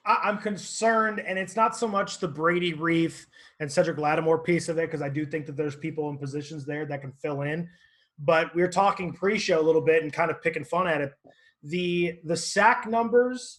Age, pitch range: 20-39, 155-185 Hz